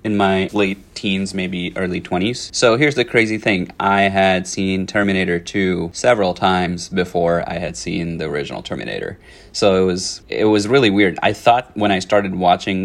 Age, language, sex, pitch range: 30-49, English, male, 90-100 Hz